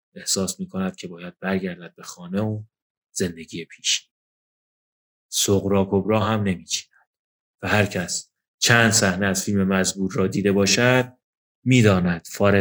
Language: Persian